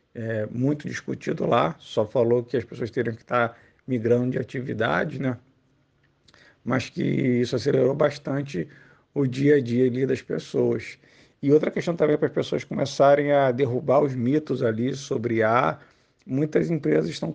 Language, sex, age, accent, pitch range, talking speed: Portuguese, male, 50-69, Brazilian, 130-155 Hz, 160 wpm